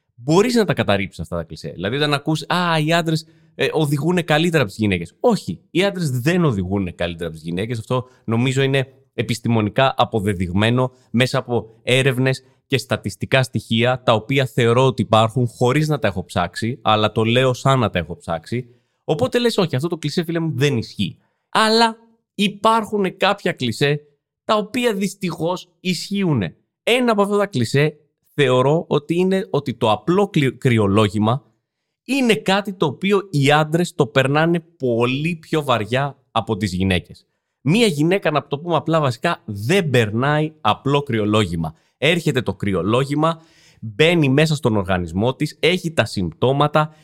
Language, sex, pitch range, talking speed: Greek, male, 115-170 Hz, 155 wpm